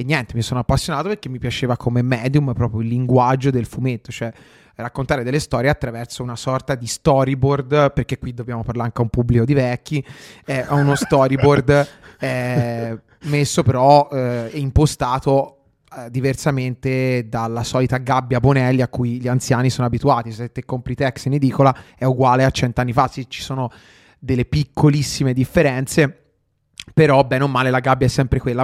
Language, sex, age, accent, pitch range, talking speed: Italian, male, 30-49, native, 125-145 Hz, 165 wpm